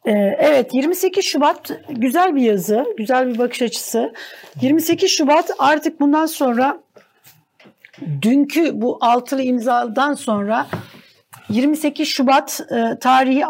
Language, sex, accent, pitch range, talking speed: Turkish, female, native, 215-275 Hz, 100 wpm